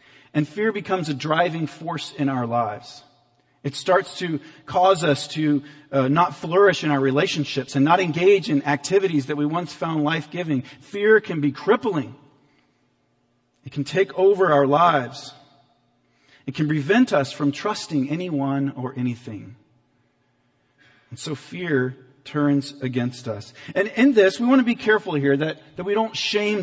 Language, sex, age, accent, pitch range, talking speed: English, male, 40-59, American, 140-190 Hz, 160 wpm